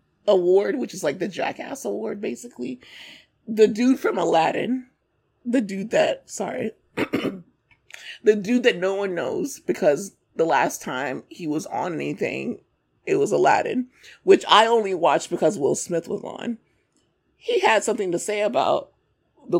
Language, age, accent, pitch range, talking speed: English, 30-49, American, 190-280 Hz, 150 wpm